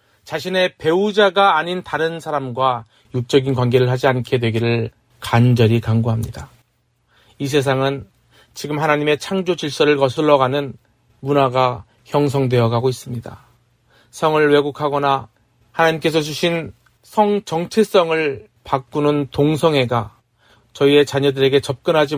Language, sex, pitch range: Korean, male, 120-155 Hz